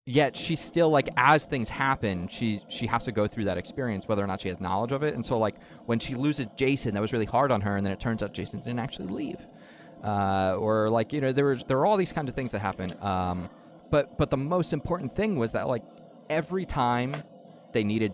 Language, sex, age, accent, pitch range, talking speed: English, male, 30-49, American, 100-135 Hz, 250 wpm